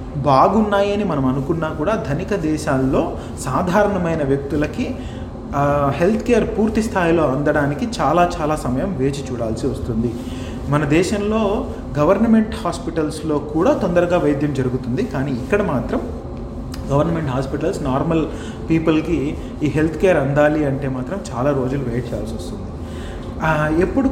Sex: male